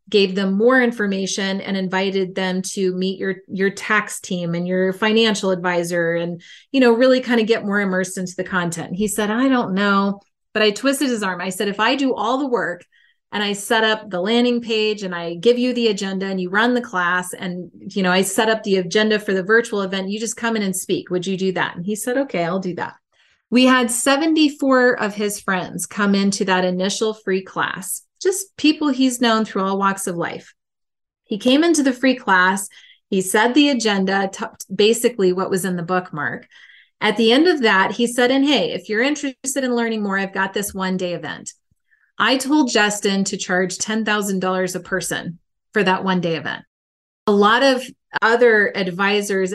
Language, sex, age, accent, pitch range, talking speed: English, female, 30-49, American, 185-235 Hz, 210 wpm